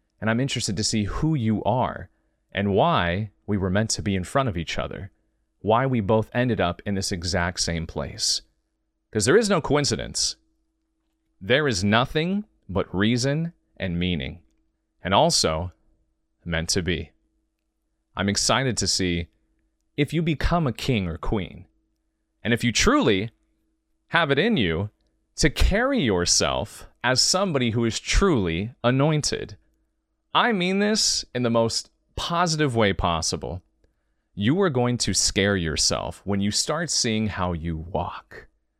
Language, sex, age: English, male, 30-49